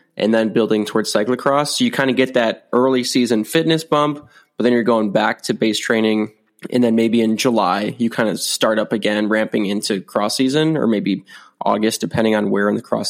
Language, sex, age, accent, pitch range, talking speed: English, male, 20-39, American, 110-130 Hz, 215 wpm